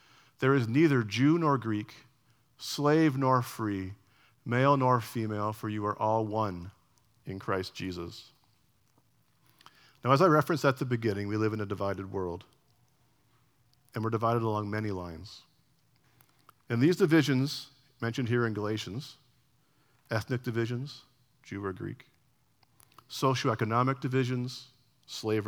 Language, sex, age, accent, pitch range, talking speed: English, male, 50-69, American, 110-135 Hz, 125 wpm